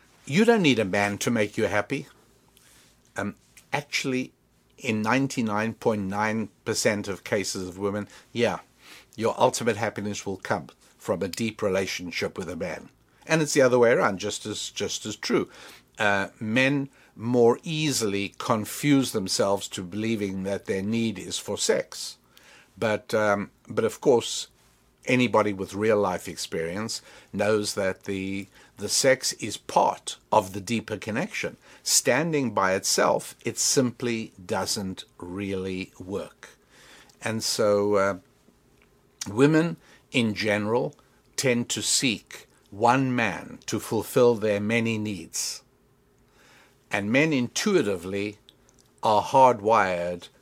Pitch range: 100-125 Hz